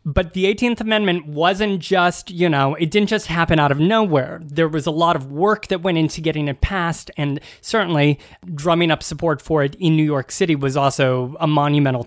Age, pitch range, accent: 20-39, 145-185 Hz, American